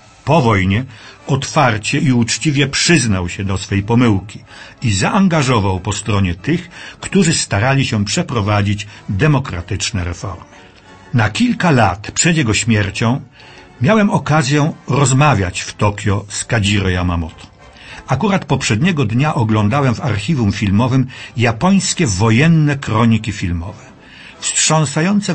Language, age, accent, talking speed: Polish, 50-69, native, 110 wpm